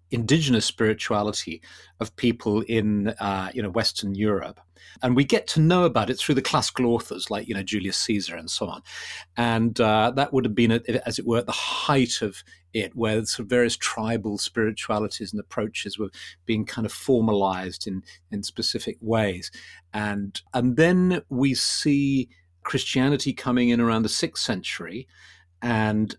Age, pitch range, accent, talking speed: 40-59, 105-130 Hz, British, 165 wpm